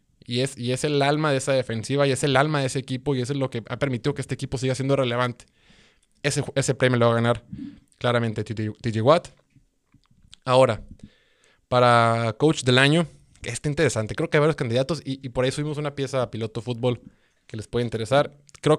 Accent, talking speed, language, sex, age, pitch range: Mexican, 215 wpm, Spanish, male, 20-39, 115-140 Hz